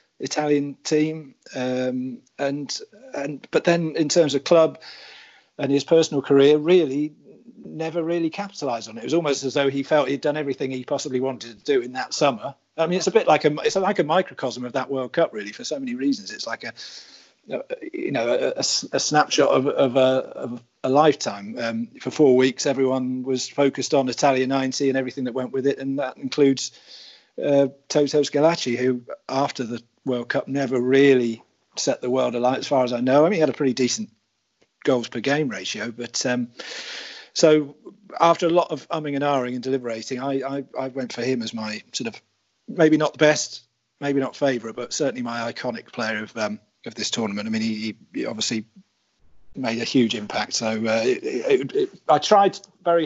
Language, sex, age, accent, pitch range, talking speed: English, male, 40-59, British, 125-155 Hz, 205 wpm